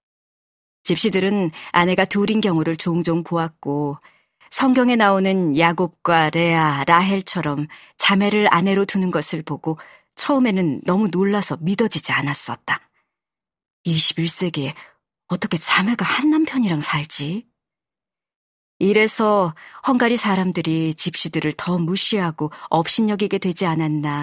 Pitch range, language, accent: 155-195 Hz, Korean, native